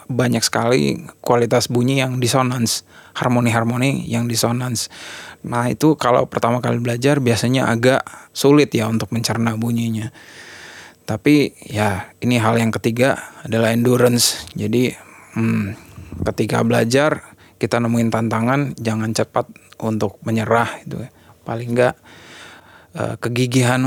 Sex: male